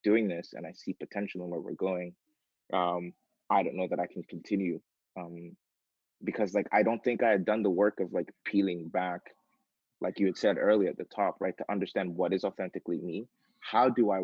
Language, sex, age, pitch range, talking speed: English, male, 20-39, 90-105 Hz, 215 wpm